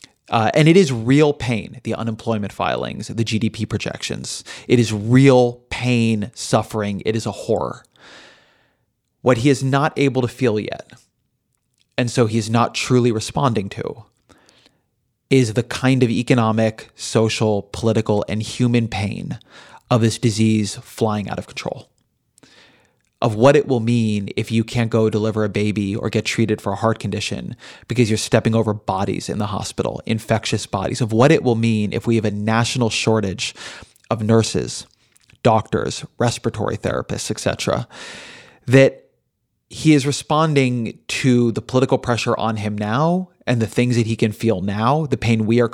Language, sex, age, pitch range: English, male, 30-49, 110-125 Hz